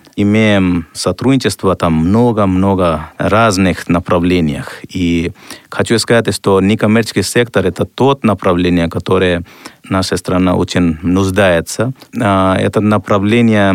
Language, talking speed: Russian, 100 wpm